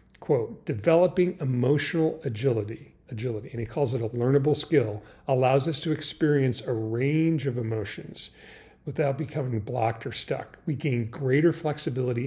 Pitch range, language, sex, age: 110-145 Hz, English, male, 40-59